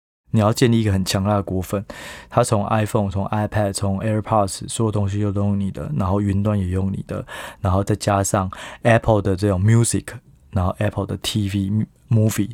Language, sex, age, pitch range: Chinese, male, 20-39, 95-110 Hz